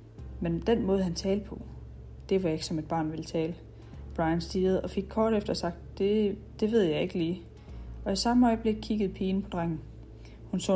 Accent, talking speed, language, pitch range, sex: native, 205 wpm, Danish, 140-195 Hz, female